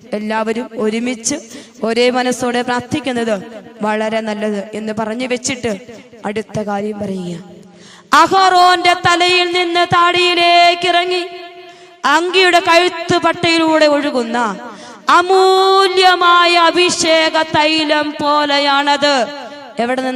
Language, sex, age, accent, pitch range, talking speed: English, female, 20-39, Indian, 250-350 Hz, 80 wpm